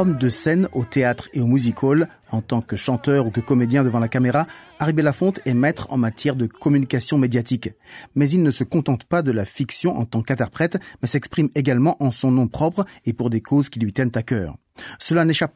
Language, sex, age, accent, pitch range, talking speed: French, male, 30-49, French, 120-155 Hz, 215 wpm